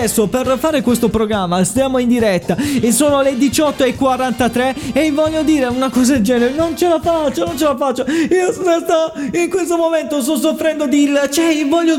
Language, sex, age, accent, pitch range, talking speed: Italian, male, 20-39, native, 235-305 Hz, 195 wpm